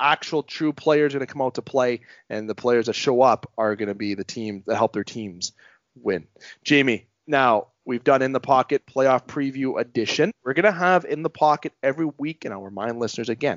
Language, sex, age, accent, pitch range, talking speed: English, male, 30-49, American, 110-135 Hz, 230 wpm